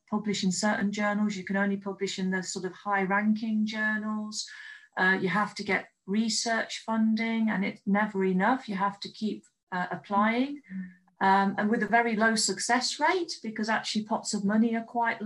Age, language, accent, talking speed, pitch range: 40-59, English, British, 180 wpm, 195-235 Hz